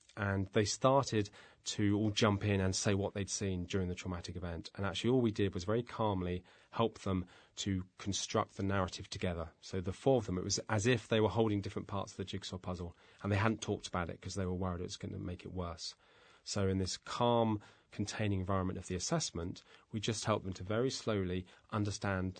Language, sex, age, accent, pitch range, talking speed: English, male, 30-49, British, 95-110 Hz, 220 wpm